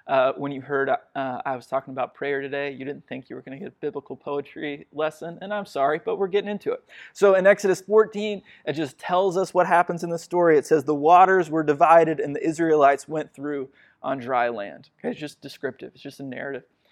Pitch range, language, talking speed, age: 140-175 Hz, English, 235 wpm, 20-39